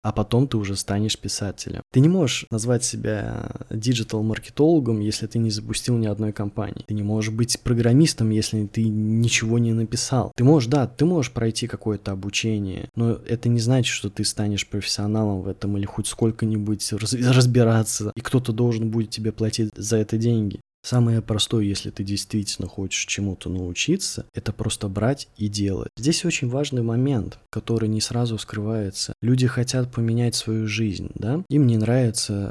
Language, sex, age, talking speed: Russian, male, 20-39, 165 wpm